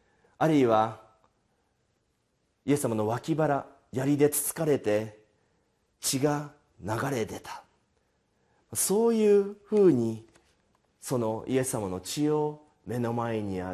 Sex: male